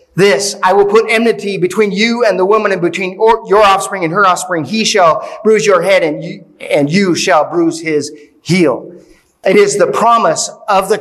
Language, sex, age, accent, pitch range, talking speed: English, male, 30-49, American, 190-245 Hz, 190 wpm